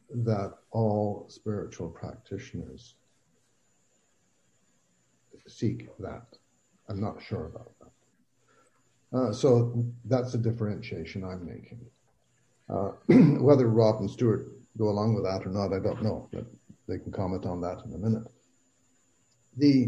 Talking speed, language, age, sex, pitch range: 125 wpm, English, 60-79, male, 105-125 Hz